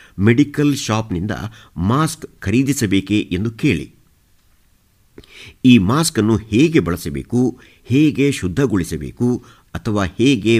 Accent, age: native, 50-69